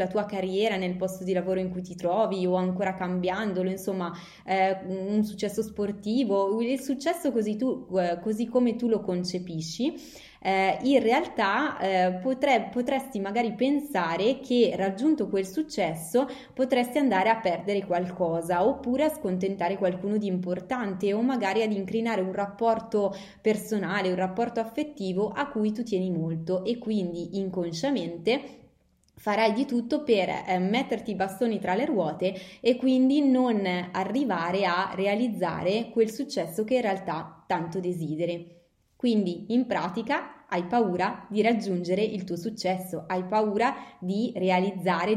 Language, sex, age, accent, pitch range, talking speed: Italian, female, 20-39, native, 185-240 Hz, 140 wpm